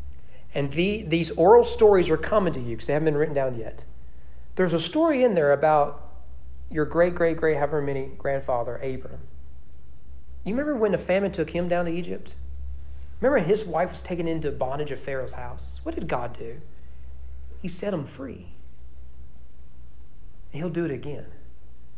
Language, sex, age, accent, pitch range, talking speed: English, male, 40-59, American, 115-185 Hz, 170 wpm